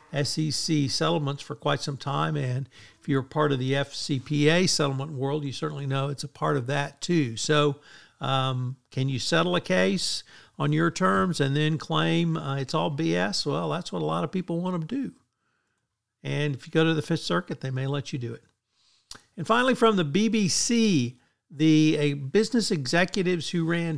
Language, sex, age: English, male, 50-69